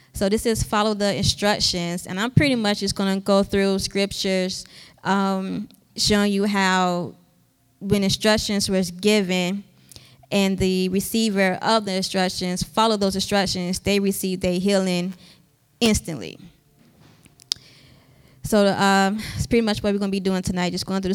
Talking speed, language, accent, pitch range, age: 150 wpm, English, American, 185-220 Hz, 20-39